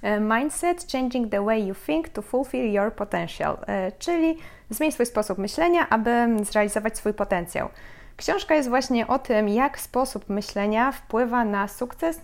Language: Polish